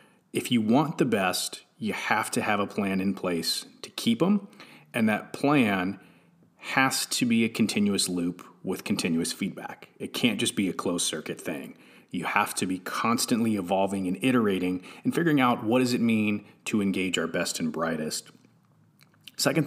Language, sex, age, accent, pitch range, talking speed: English, male, 30-49, American, 105-180 Hz, 175 wpm